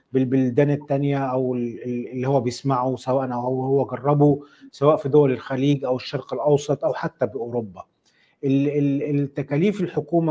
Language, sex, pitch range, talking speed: Arabic, male, 130-150 Hz, 135 wpm